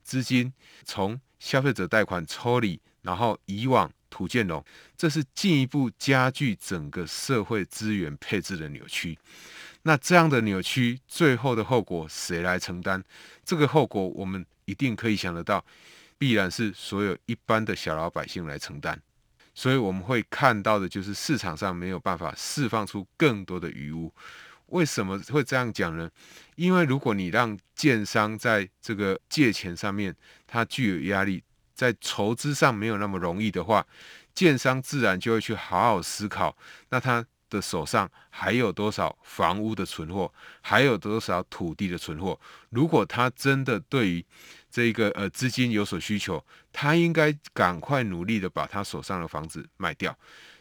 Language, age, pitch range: Chinese, 30-49, 95-130 Hz